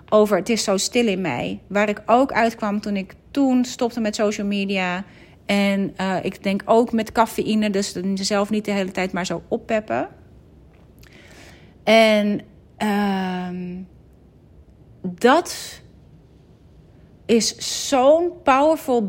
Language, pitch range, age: Dutch, 195-240 Hz, 30-49